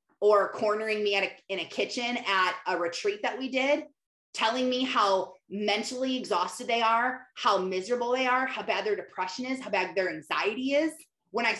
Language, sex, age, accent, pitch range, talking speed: English, female, 30-49, American, 200-280 Hz, 180 wpm